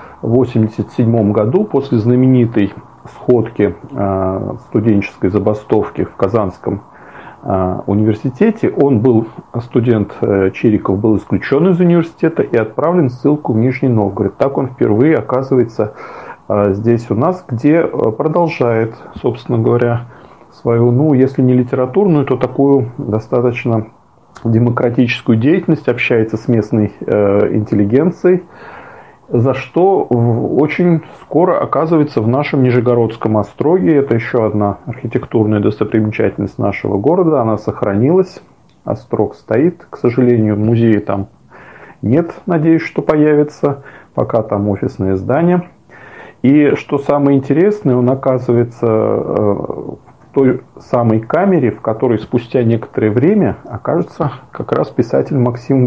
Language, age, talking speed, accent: Russian, 40-59, 110 wpm, native